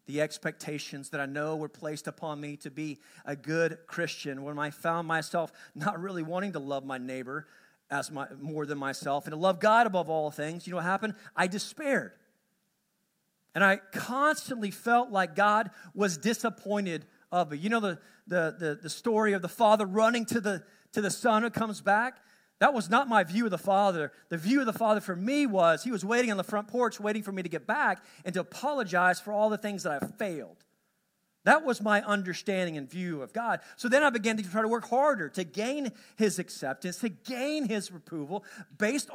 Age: 40-59